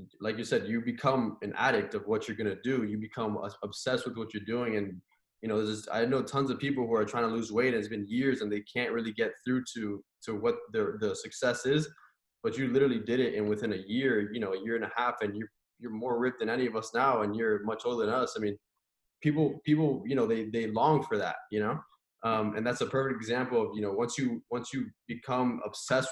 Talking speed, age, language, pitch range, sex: 255 wpm, 20-39, English, 110-130 Hz, male